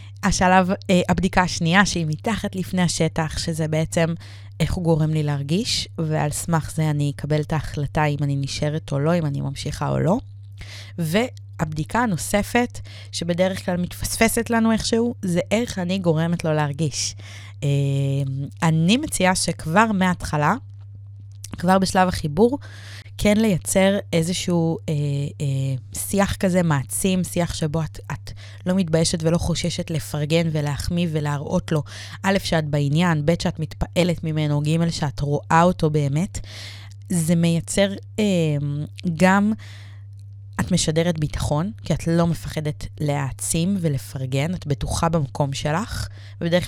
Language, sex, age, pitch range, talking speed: Hebrew, female, 20-39, 135-175 Hz, 130 wpm